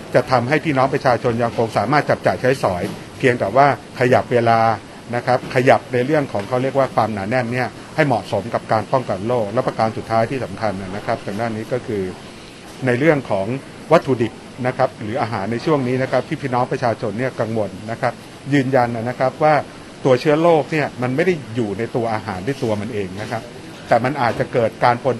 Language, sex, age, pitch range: Thai, male, 60-79, 115-135 Hz